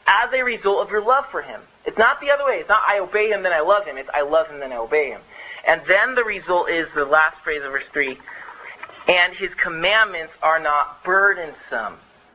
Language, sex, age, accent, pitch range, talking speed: English, male, 30-49, American, 180-235 Hz, 230 wpm